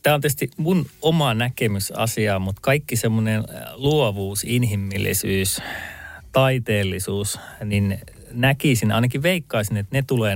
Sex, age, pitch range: male, 30-49, 100-120 Hz